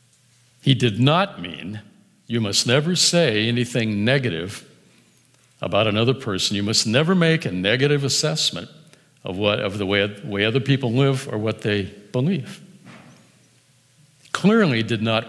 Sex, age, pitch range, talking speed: male, 60-79, 115-155 Hz, 140 wpm